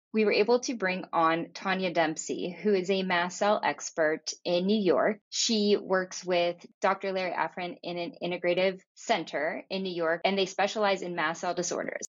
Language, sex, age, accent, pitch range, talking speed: English, female, 10-29, American, 170-210 Hz, 180 wpm